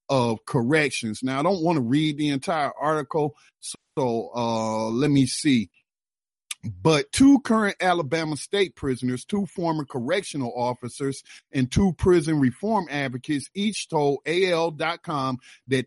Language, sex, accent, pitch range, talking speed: English, male, American, 125-160 Hz, 130 wpm